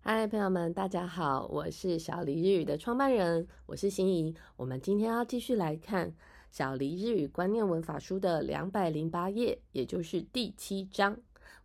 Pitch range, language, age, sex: 155-205 Hz, Japanese, 30-49, female